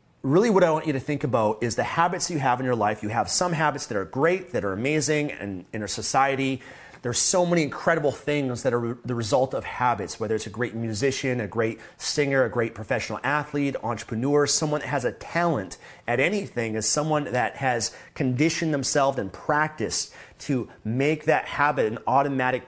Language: English